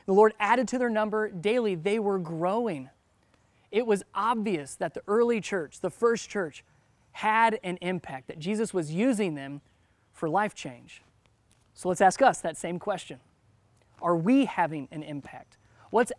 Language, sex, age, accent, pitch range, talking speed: English, male, 20-39, American, 150-220 Hz, 165 wpm